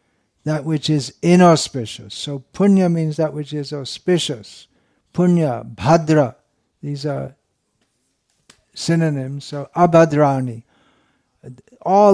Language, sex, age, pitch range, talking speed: English, male, 60-79, 130-165 Hz, 95 wpm